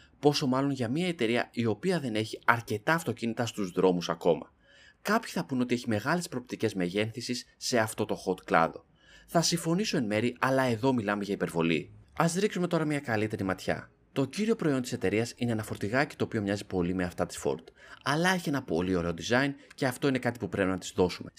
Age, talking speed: 30-49, 205 wpm